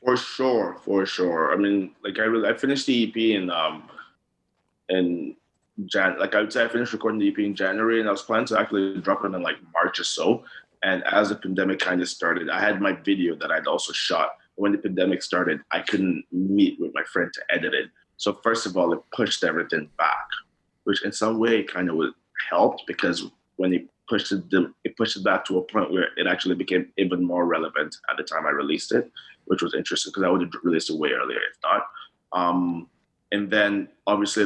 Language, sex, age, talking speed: English, male, 20-39, 220 wpm